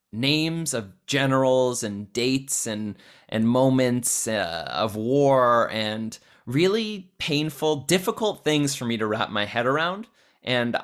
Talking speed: 135 wpm